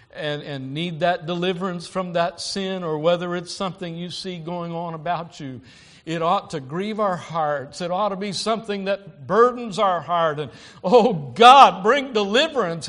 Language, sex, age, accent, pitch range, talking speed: English, male, 60-79, American, 150-220 Hz, 175 wpm